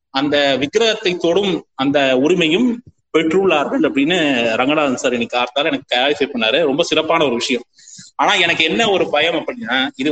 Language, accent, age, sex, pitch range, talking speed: Tamil, native, 30-49, male, 135-205 Hz, 140 wpm